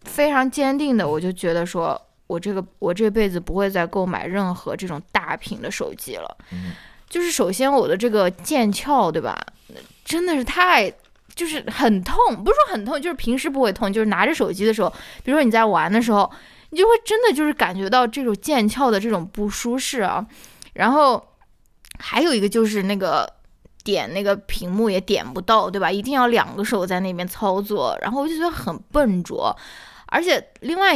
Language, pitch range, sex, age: Chinese, 190-255 Hz, female, 20-39